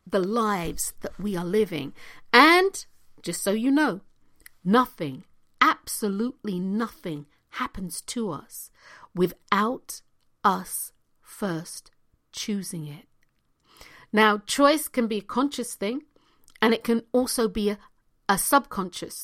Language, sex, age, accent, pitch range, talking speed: English, female, 50-69, British, 170-230 Hz, 115 wpm